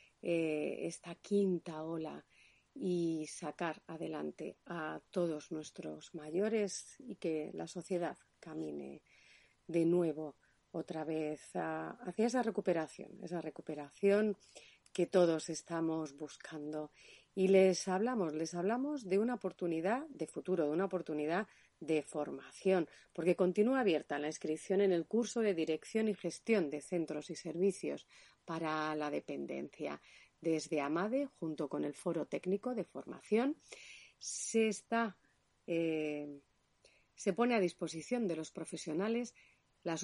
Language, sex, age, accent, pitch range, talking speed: Spanish, female, 40-59, Spanish, 155-195 Hz, 120 wpm